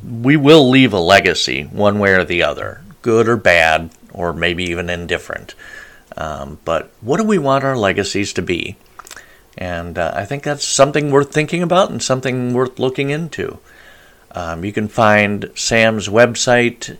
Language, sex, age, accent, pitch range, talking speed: English, male, 50-69, American, 100-140 Hz, 165 wpm